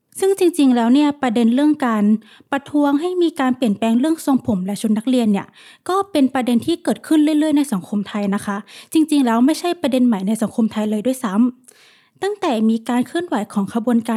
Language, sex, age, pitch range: Thai, female, 20-39, 220-280 Hz